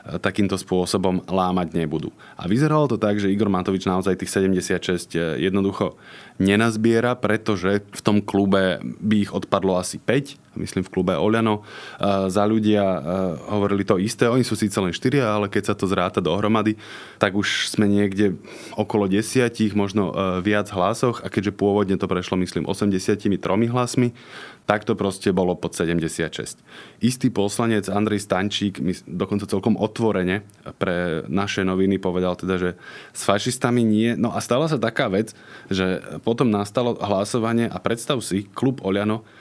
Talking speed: 155 wpm